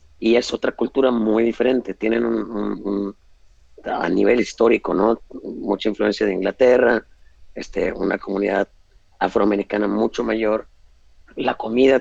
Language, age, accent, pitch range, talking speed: Spanish, 40-59, Mexican, 95-115 Hz, 110 wpm